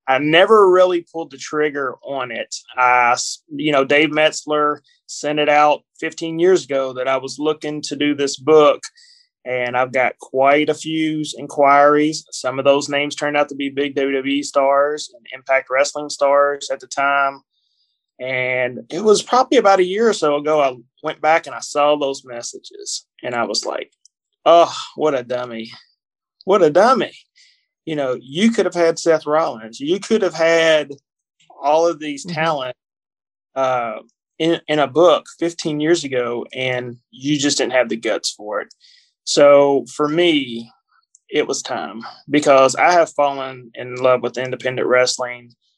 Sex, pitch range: male, 135-160 Hz